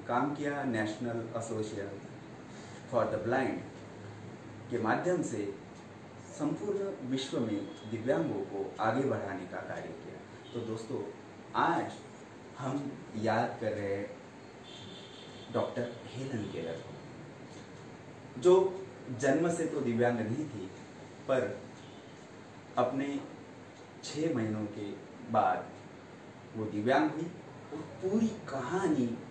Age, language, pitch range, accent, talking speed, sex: 30-49, Hindi, 110-140 Hz, native, 105 wpm, male